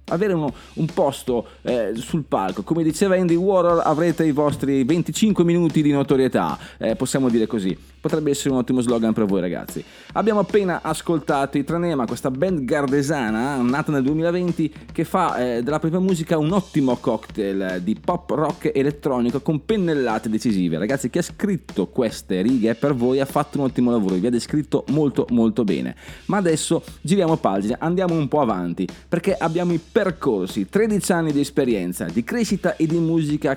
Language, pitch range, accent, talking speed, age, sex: Italian, 120-165 Hz, native, 175 wpm, 30-49, male